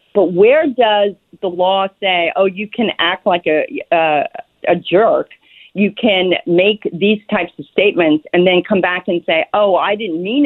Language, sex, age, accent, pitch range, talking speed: English, female, 50-69, American, 185-245 Hz, 185 wpm